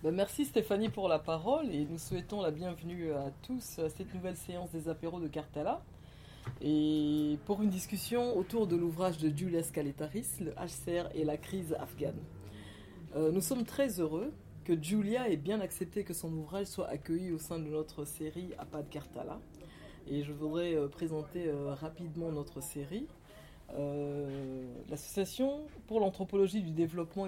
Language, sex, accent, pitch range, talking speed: French, female, French, 150-195 Hz, 160 wpm